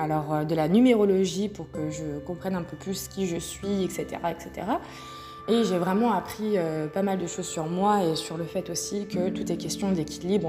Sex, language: female, French